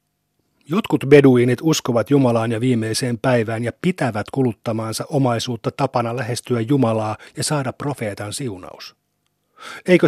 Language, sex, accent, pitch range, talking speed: Finnish, male, native, 115-145 Hz, 115 wpm